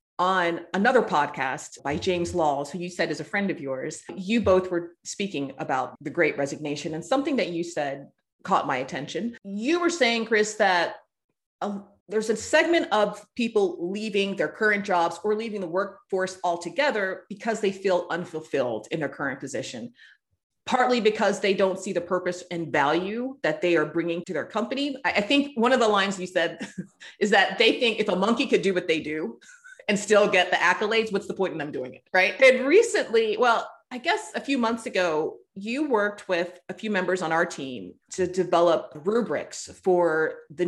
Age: 30-49